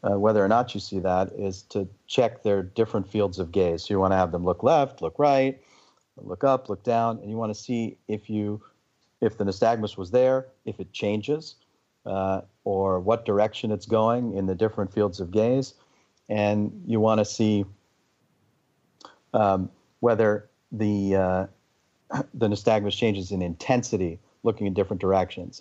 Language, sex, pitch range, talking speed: English, male, 95-110 Hz, 175 wpm